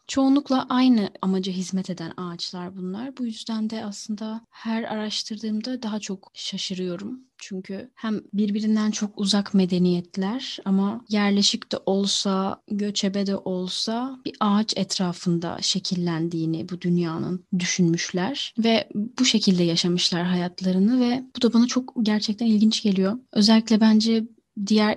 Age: 30-49